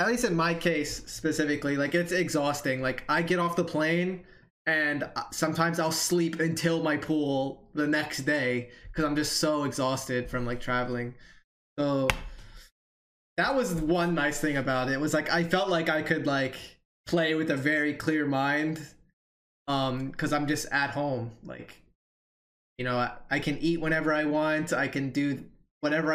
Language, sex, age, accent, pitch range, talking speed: English, male, 20-39, American, 130-155 Hz, 175 wpm